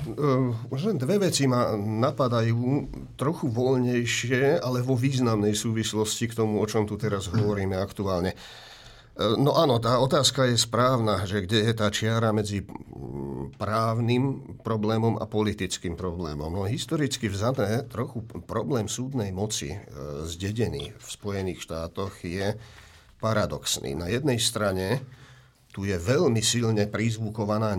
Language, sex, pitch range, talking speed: Slovak, male, 100-120 Hz, 125 wpm